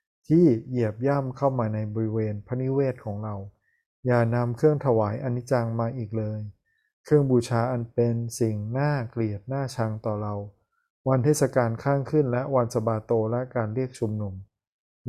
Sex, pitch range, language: male, 110-130 Hz, Thai